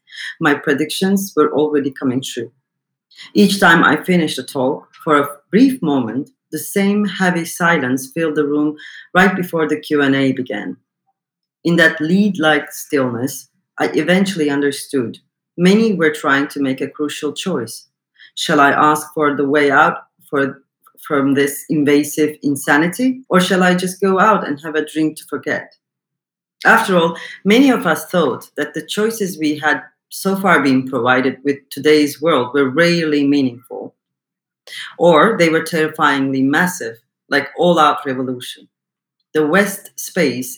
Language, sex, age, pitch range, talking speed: English, female, 40-59, 140-175 Hz, 145 wpm